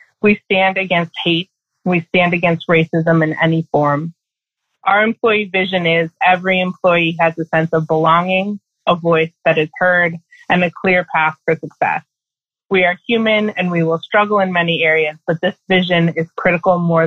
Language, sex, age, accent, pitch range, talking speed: English, female, 30-49, American, 160-190 Hz, 170 wpm